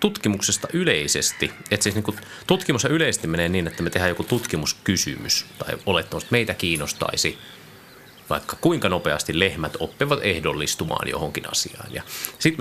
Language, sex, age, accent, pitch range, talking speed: Finnish, male, 30-49, native, 90-130 Hz, 125 wpm